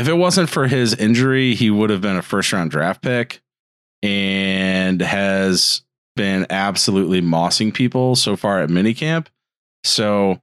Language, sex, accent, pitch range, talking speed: English, male, American, 80-125 Hz, 150 wpm